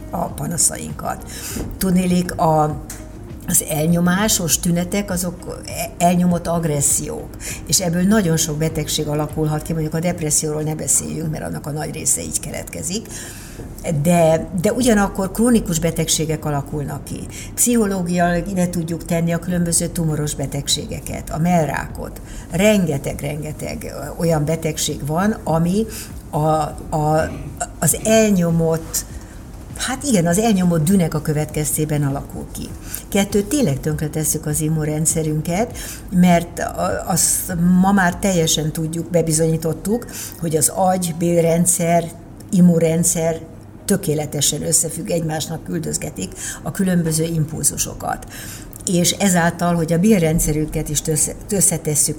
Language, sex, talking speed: Hungarian, female, 110 wpm